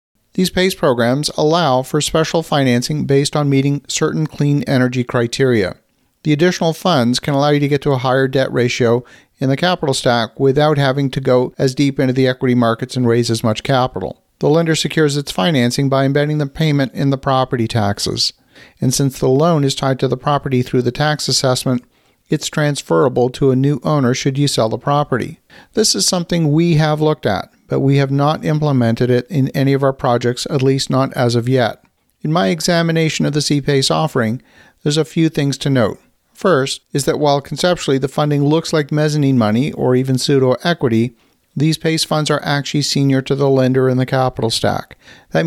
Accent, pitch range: American, 125-150 Hz